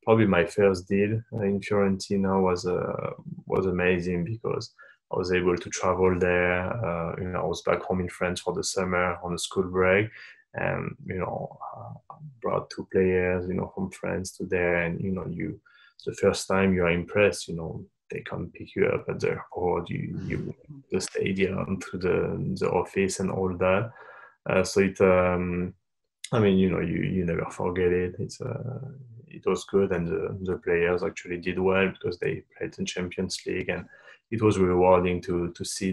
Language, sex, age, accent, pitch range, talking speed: English, male, 20-39, French, 90-100 Hz, 190 wpm